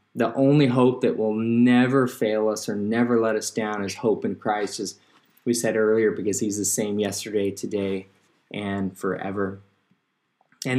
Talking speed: 165 wpm